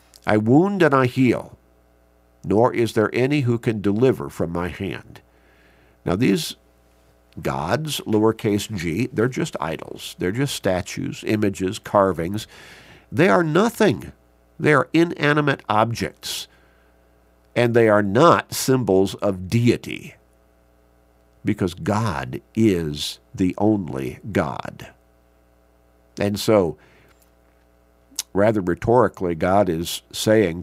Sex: male